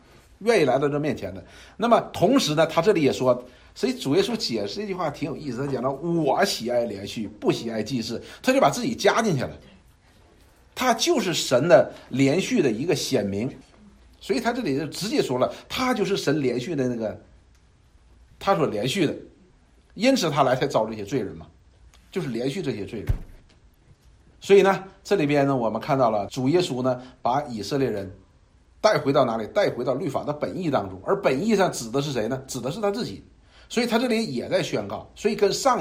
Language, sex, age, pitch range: Chinese, male, 50-69, 110-185 Hz